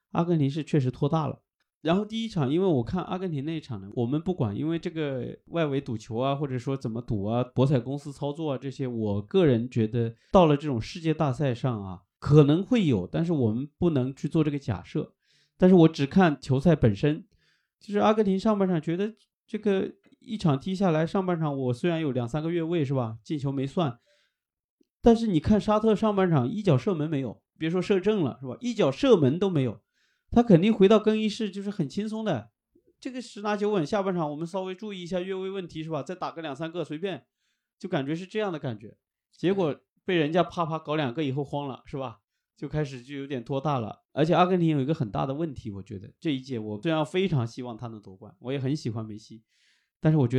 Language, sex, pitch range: Chinese, male, 125-180 Hz